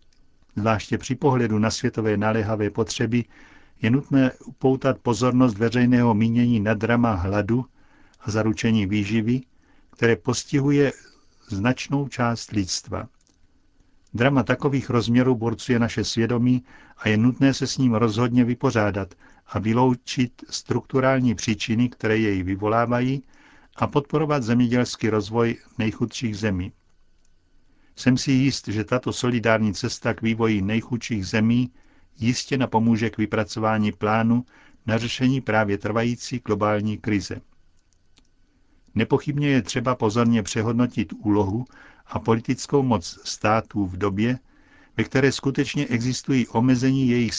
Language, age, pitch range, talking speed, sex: Czech, 60-79, 110-125 Hz, 115 wpm, male